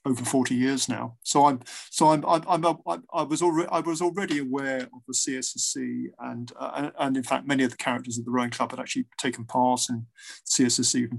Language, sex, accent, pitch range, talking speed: English, male, British, 120-140 Hz, 210 wpm